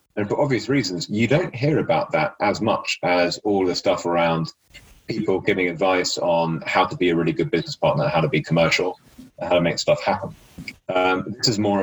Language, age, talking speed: English, 30-49, 210 wpm